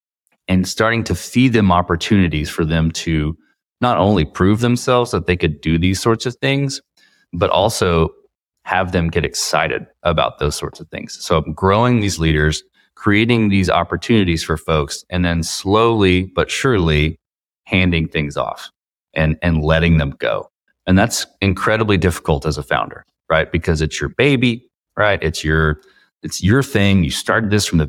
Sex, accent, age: male, American, 30-49